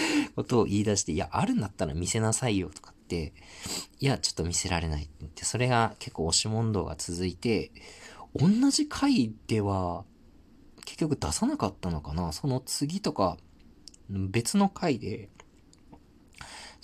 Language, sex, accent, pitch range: Japanese, male, native, 90-140 Hz